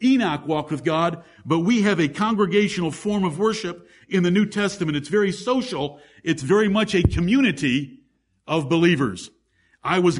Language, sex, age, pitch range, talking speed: English, male, 50-69, 160-210 Hz, 165 wpm